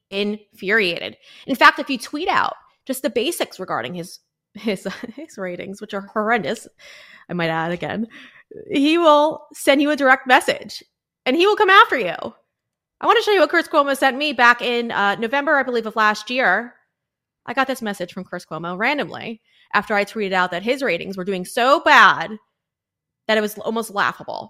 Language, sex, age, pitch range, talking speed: English, female, 20-39, 195-290 Hz, 190 wpm